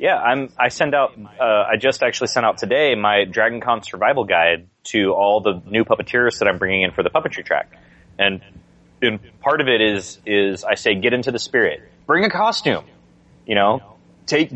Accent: American